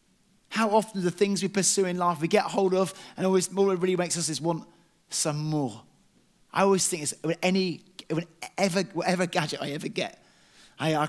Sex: male